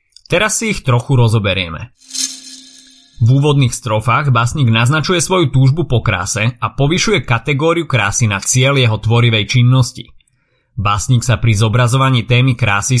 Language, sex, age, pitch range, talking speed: Slovak, male, 30-49, 110-140 Hz, 135 wpm